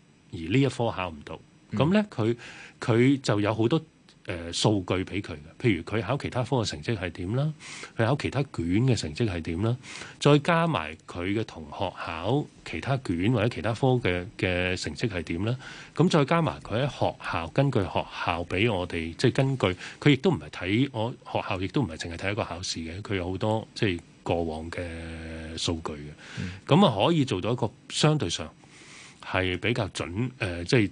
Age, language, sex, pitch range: 20-39, Chinese, male, 85-125 Hz